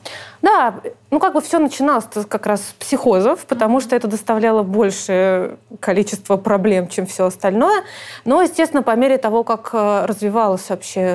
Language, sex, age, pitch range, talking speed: Russian, female, 20-39, 200-250 Hz, 150 wpm